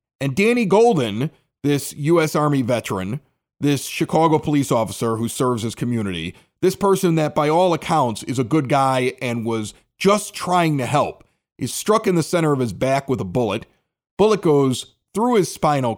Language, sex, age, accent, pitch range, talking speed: English, male, 40-59, American, 130-180 Hz, 175 wpm